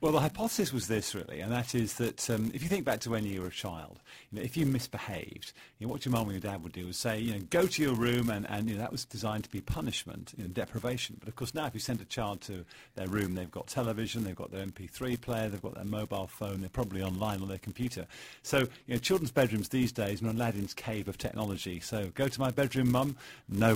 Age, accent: 50-69, British